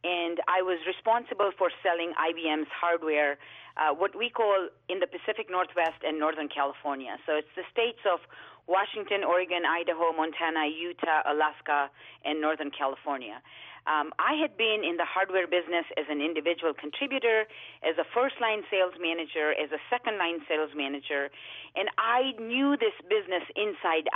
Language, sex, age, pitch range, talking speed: English, female, 40-59, 165-235 Hz, 155 wpm